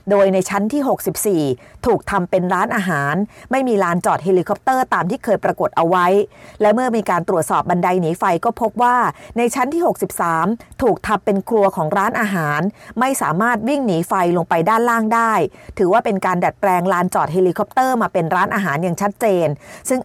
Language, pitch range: Thai, 180-230 Hz